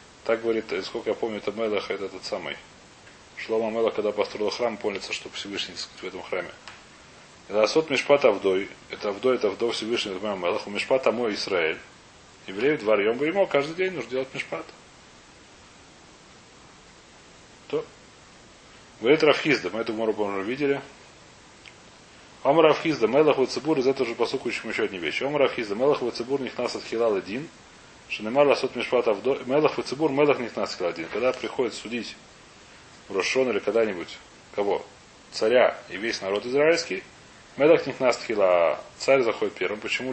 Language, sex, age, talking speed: Russian, male, 30-49, 155 wpm